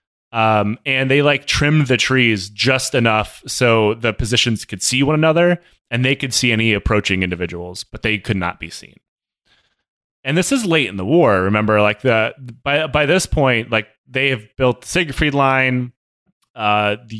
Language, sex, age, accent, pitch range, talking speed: English, male, 20-39, American, 100-140 Hz, 180 wpm